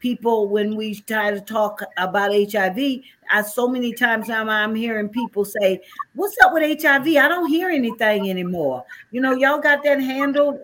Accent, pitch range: American, 200-245 Hz